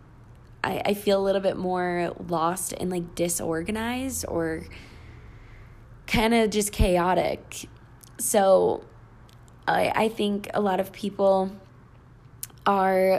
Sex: female